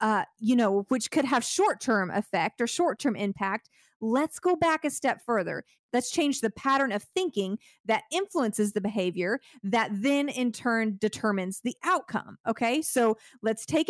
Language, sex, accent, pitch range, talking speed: English, female, American, 210-270 Hz, 165 wpm